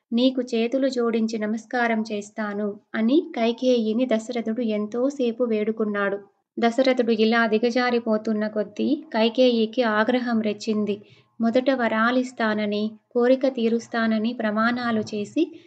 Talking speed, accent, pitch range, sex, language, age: 85 wpm, native, 220-245 Hz, female, Telugu, 20-39